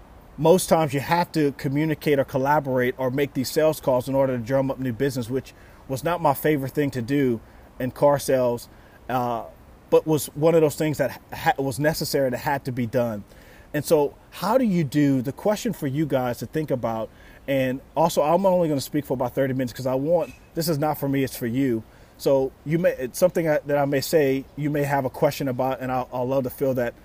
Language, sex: English, male